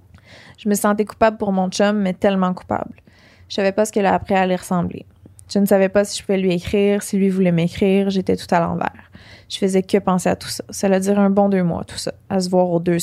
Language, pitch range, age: English, 170-200 Hz, 20-39